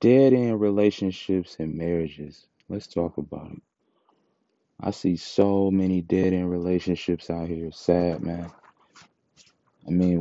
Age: 30-49